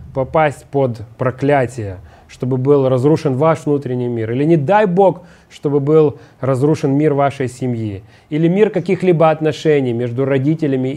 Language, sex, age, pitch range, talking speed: Russian, male, 30-49, 140-195 Hz, 135 wpm